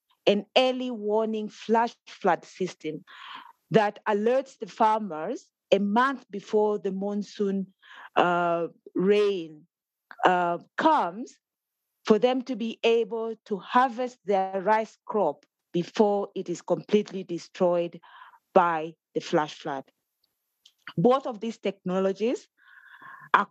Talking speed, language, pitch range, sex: 110 wpm, English, 175-230 Hz, female